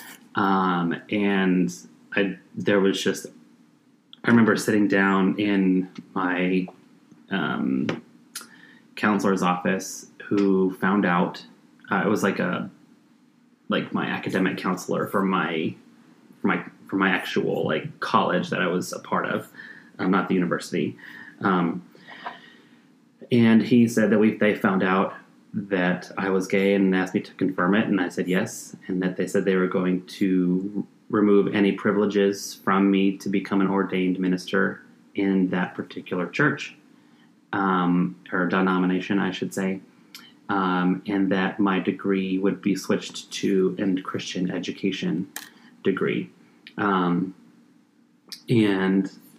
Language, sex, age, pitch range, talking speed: English, male, 30-49, 95-100 Hz, 135 wpm